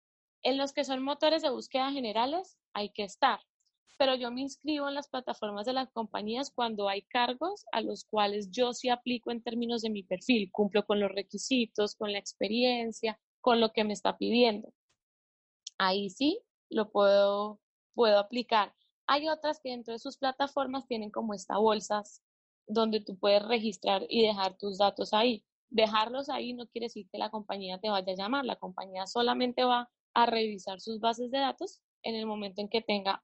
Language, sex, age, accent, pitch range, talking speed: Spanish, female, 10-29, Colombian, 205-250 Hz, 185 wpm